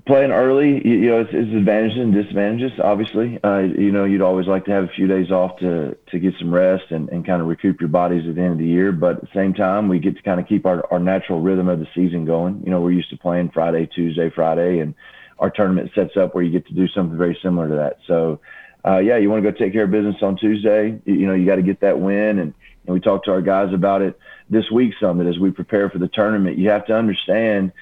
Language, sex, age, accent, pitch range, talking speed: English, male, 40-59, American, 90-100 Hz, 270 wpm